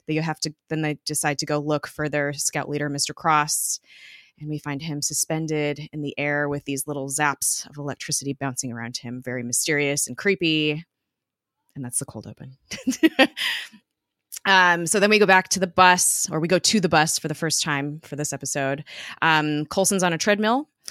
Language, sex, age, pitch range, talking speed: English, female, 20-39, 145-175 Hz, 195 wpm